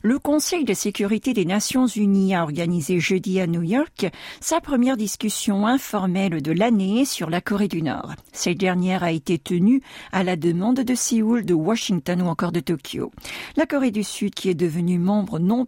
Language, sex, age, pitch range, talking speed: French, female, 50-69, 175-240 Hz, 190 wpm